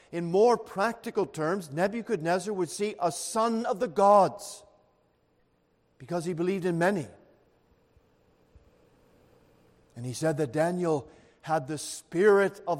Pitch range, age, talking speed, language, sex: 155-195 Hz, 50-69, 120 wpm, English, male